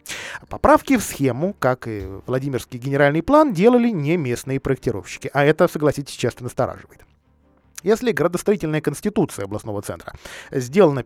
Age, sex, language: 20-39, male, Russian